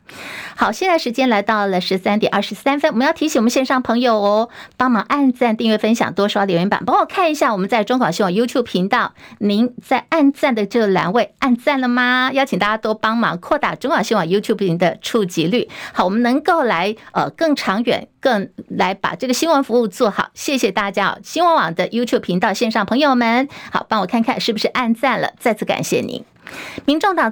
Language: Chinese